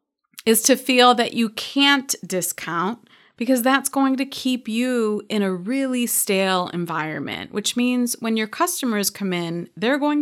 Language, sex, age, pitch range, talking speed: English, female, 30-49, 180-240 Hz, 160 wpm